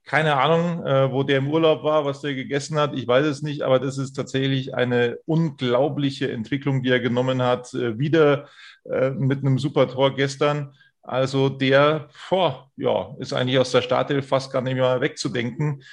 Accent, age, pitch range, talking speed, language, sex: German, 30-49, 130-160 Hz, 175 wpm, German, male